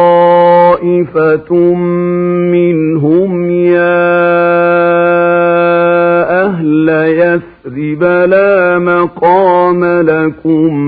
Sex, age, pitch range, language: male, 50-69, 130-175 Hz, Arabic